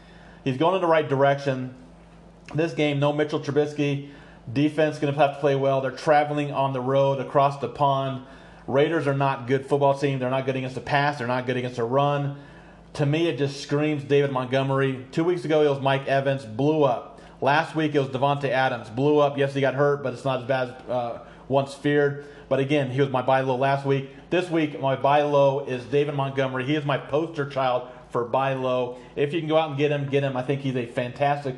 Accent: American